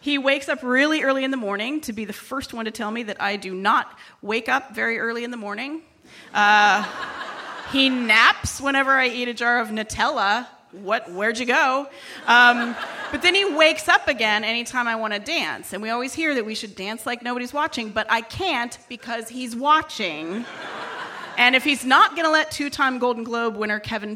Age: 30-49